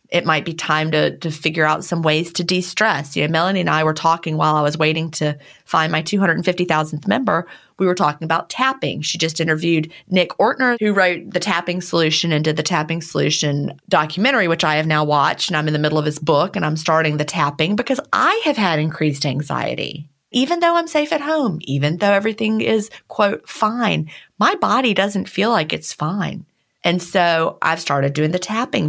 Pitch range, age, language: 155-200 Hz, 30-49, English